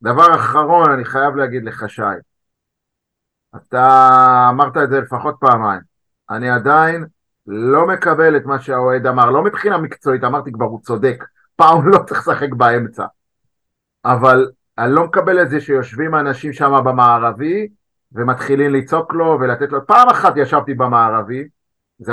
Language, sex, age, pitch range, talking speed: Hebrew, male, 50-69, 130-200 Hz, 145 wpm